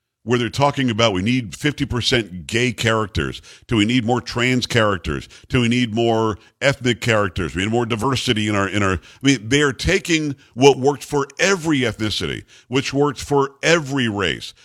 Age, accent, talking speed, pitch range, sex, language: 50-69, American, 180 wpm, 110-140 Hz, male, English